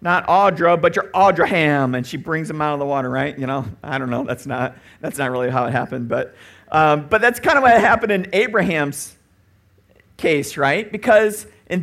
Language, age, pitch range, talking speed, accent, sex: English, 50-69, 125-190 Hz, 210 wpm, American, male